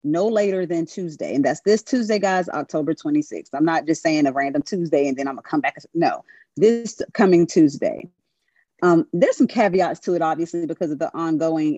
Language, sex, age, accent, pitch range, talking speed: English, female, 30-49, American, 160-215 Hz, 200 wpm